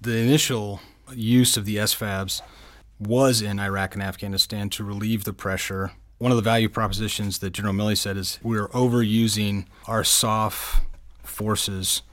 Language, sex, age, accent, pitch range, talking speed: English, male, 30-49, American, 95-115 Hz, 150 wpm